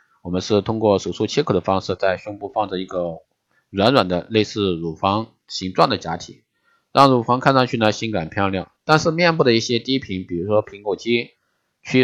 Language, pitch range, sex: Chinese, 95-130 Hz, male